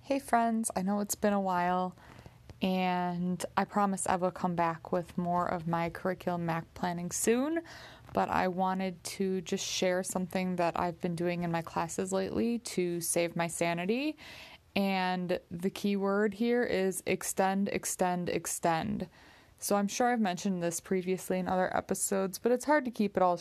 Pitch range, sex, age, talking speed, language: 175-200 Hz, female, 20-39, 175 wpm, English